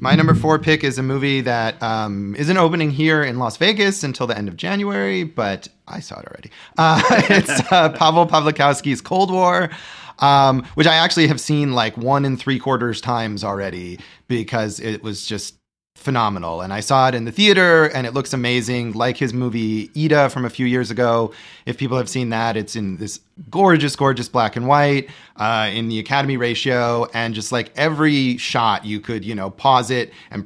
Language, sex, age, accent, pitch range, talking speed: English, male, 30-49, American, 115-140 Hz, 195 wpm